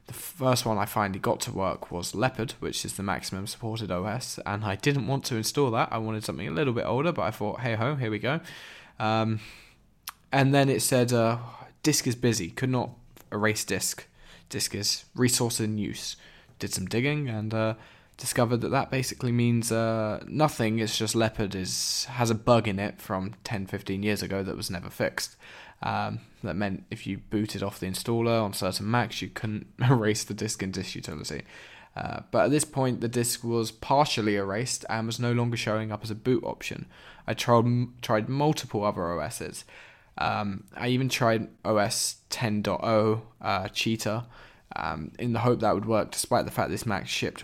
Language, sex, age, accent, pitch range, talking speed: English, male, 10-29, British, 105-125 Hz, 195 wpm